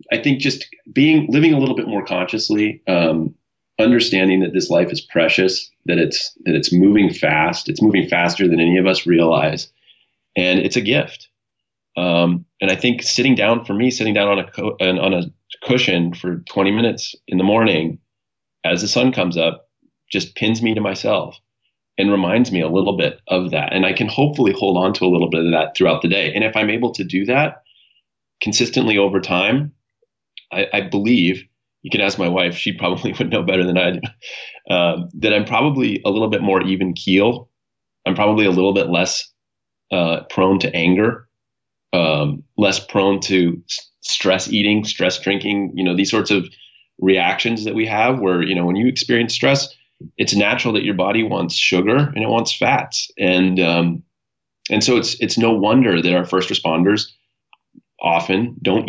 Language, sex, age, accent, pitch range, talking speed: English, male, 30-49, American, 90-115 Hz, 190 wpm